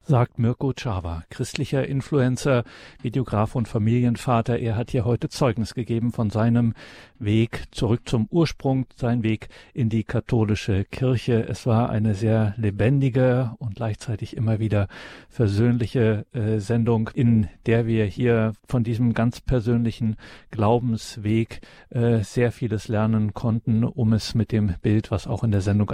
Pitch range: 105-120 Hz